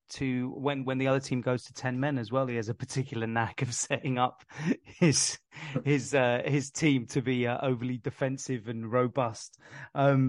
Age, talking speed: 30-49, 190 wpm